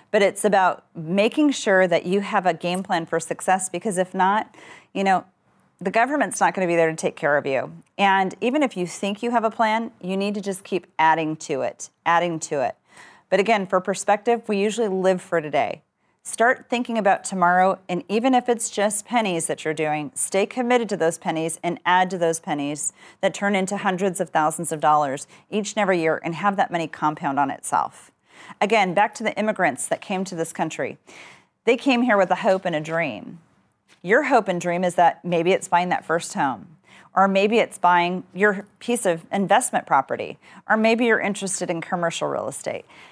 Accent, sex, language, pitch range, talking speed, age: American, female, English, 170-210 Hz, 205 wpm, 40-59